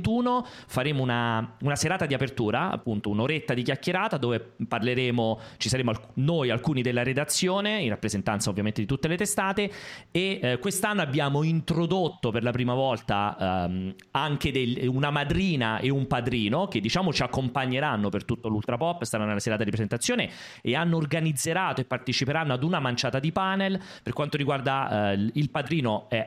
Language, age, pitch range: Italian, 30-49, 120-160 Hz